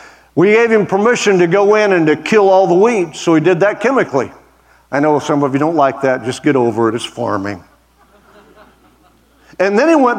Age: 50-69